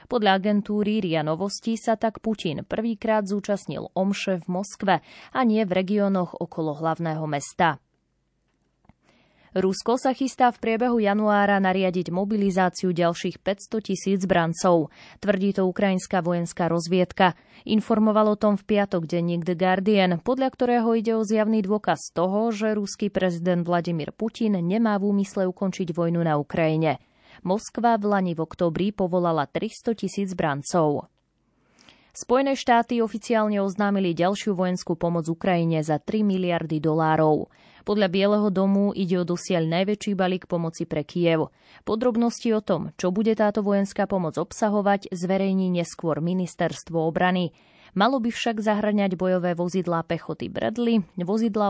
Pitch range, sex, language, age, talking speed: 170-210 Hz, female, Slovak, 20-39, 135 wpm